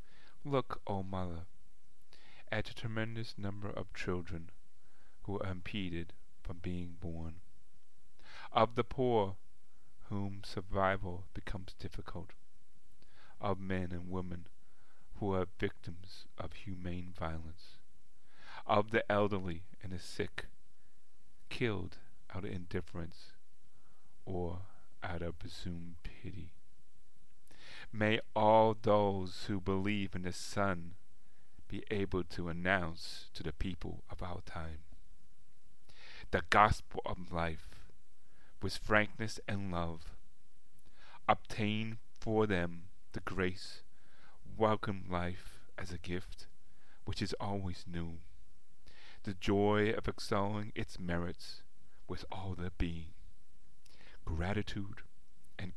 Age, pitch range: 40-59, 85-100 Hz